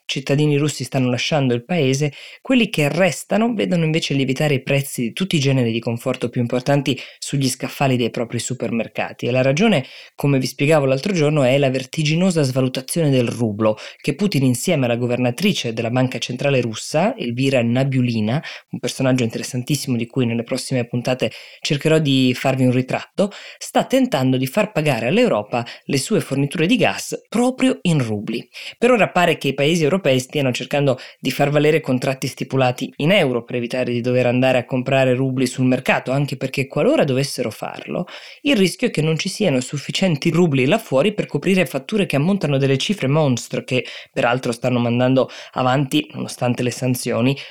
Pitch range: 125-155 Hz